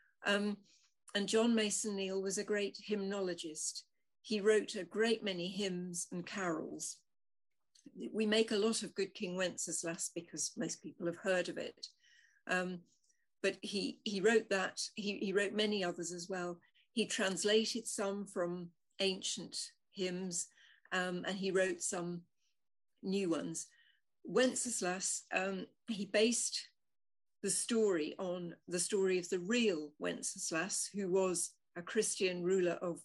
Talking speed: 140 wpm